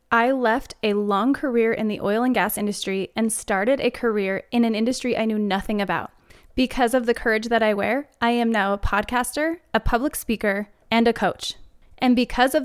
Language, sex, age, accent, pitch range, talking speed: English, female, 10-29, American, 205-255 Hz, 205 wpm